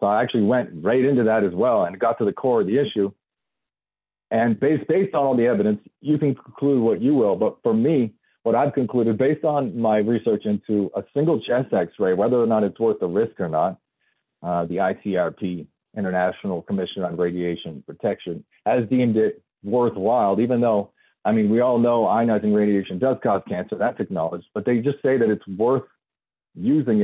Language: English